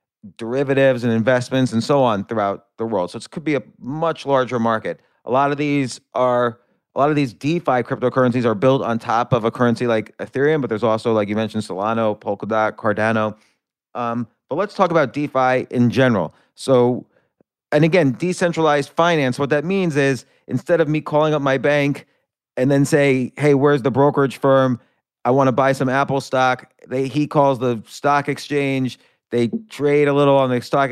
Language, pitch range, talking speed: English, 120-140 Hz, 190 wpm